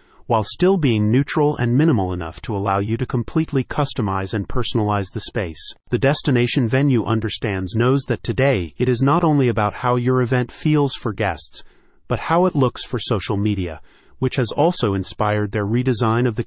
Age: 30-49